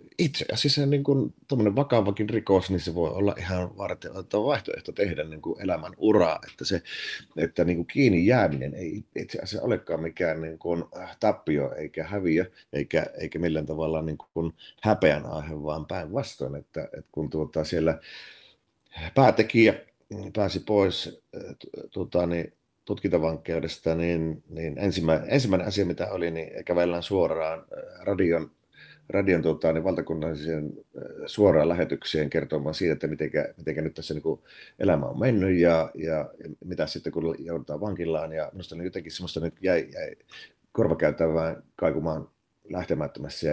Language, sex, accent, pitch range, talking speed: Finnish, male, native, 80-110 Hz, 130 wpm